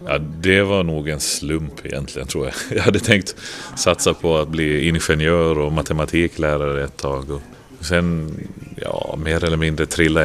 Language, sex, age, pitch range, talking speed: Swedish, male, 30-49, 75-100 Hz, 165 wpm